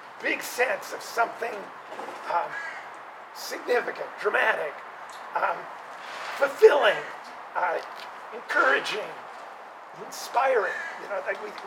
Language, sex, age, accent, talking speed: English, male, 50-69, American, 80 wpm